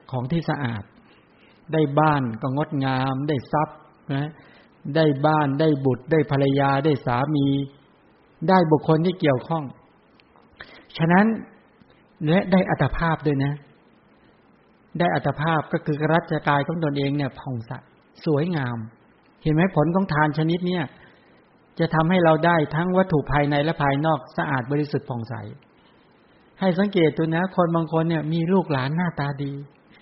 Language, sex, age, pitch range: English, male, 60-79, 140-165 Hz